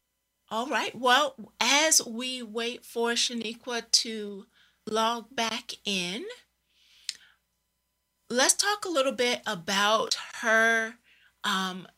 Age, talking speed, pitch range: 40-59, 100 wpm, 195-235 Hz